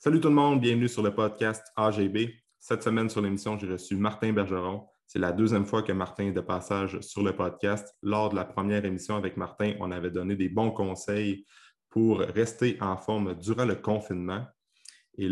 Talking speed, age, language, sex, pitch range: 195 wpm, 20-39, French, male, 95-105 Hz